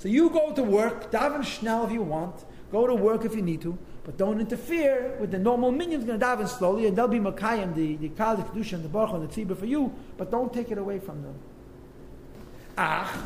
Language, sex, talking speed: English, male, 245 wpm